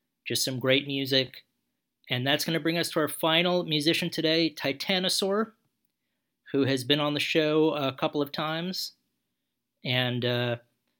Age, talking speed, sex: 40-59, 155 wpm, male